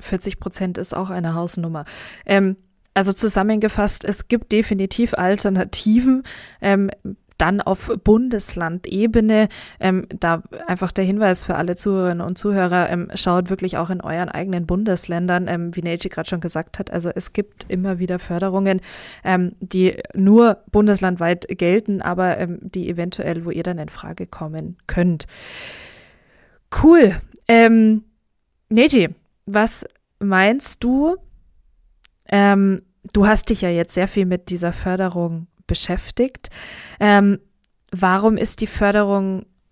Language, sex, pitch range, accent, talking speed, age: German, female, 175-210 Hz, German, 130 wpm, 20-39